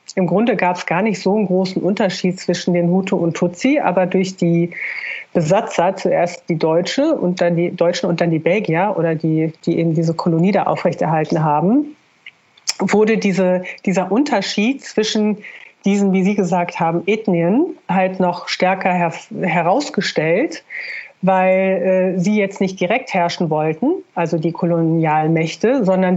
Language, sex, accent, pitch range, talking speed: German, female, German, 170-200 Hz, 155 wpm